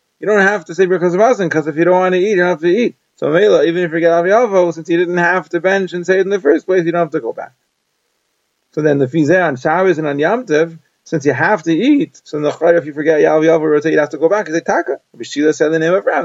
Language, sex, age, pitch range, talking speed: English, male, 30-49, 155-185 Hz, 265 wpm